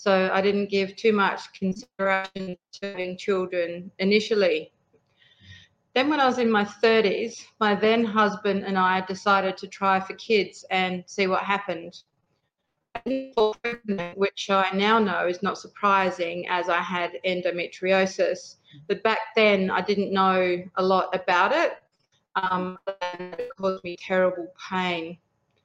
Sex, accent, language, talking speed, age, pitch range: female, Australian, English, 140 wpm, 30-49, 180-205 Hz